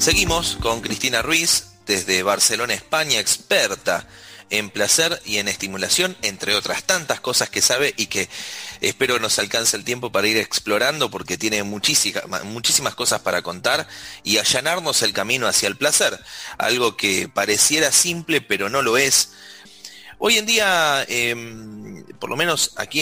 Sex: male